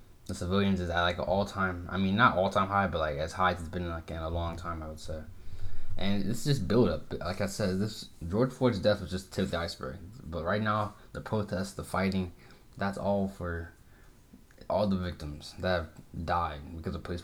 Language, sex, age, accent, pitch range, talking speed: English, male, 20-39, American, 85-100 Hz, 220 wpm